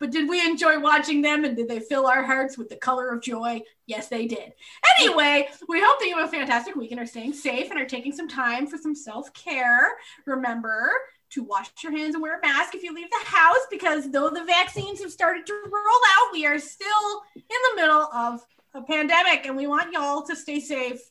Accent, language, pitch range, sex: American, English, 255-335 Hz, female